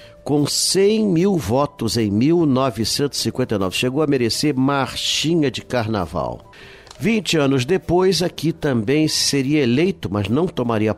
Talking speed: 120 wpm